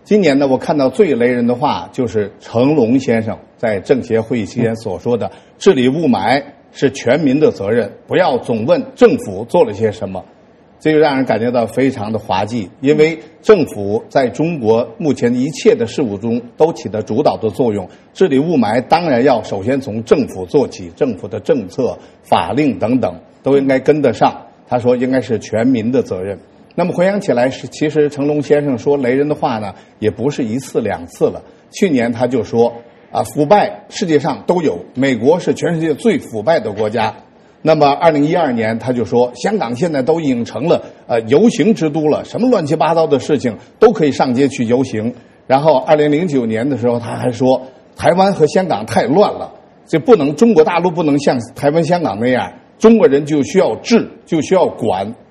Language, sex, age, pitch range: English, male, 50-69, 120-165 Hz